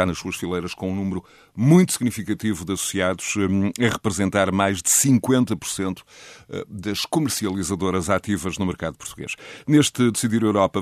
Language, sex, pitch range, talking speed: Portuguese, male, 90-110 Hz, 135 wpm